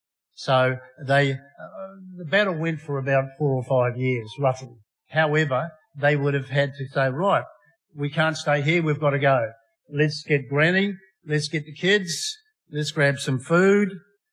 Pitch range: 135-160 Hz